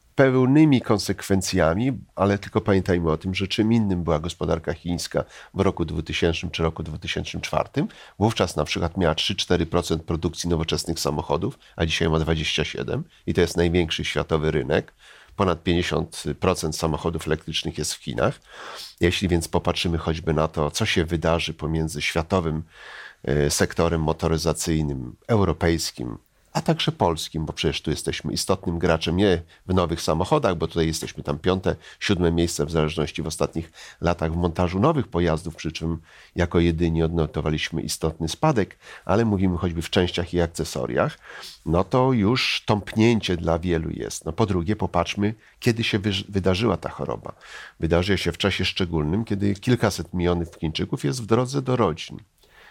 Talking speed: 150 wpm